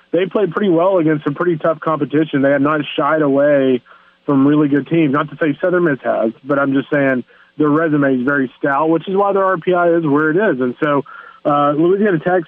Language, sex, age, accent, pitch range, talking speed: English, male, 30-49, American, 145-165 Hz, 225 wpm